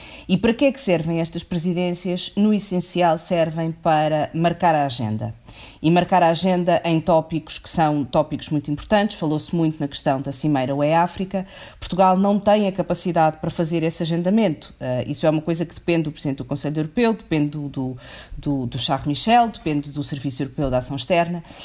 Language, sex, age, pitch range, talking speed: Portuguese, female, 40-59, 145-185 Hz, 190 wpm